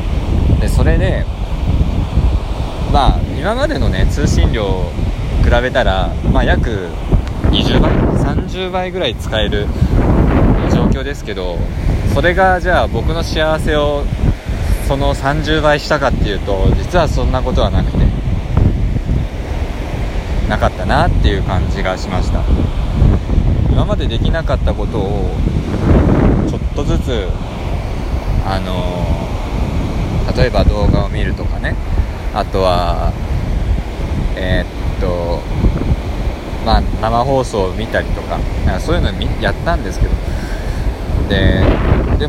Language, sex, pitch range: Japanese, male, 80-100 Hz